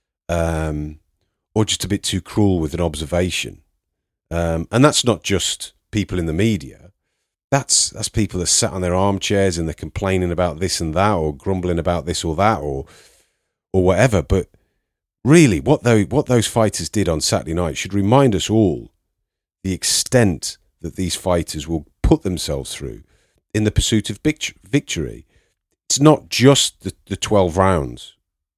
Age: 40-59